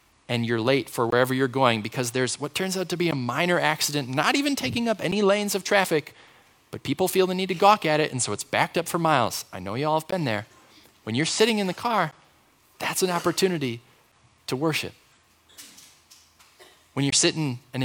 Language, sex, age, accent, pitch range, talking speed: English, male, 20-39, American, 110-150 Hz, 210 wpm